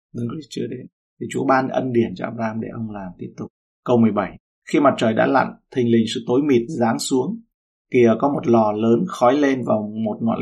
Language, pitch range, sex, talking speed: Vietnamese, 110-130 Hz, male, 200 wpm